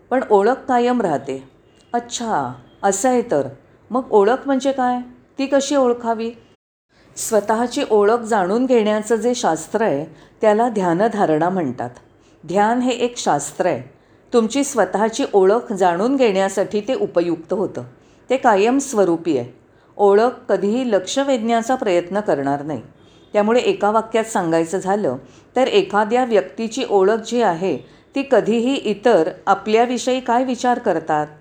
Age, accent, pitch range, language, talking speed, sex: 40-59, native, 180-245 Hz, Marathi, 130 wpm, female